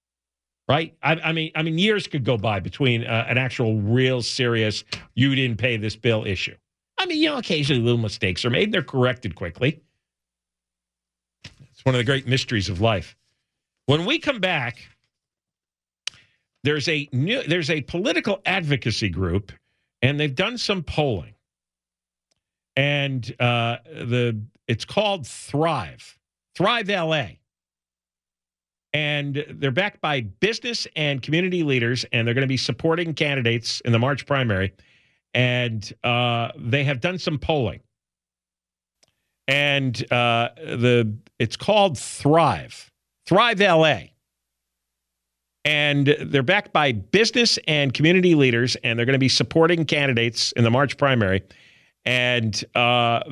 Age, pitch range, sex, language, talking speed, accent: 50-69, 110-150 Hz, male, English, 135 wpm, American